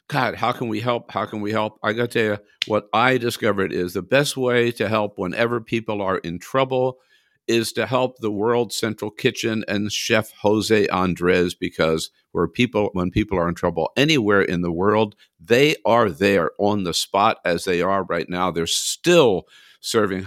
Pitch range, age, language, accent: 90-115 Hz, 50-69, English, American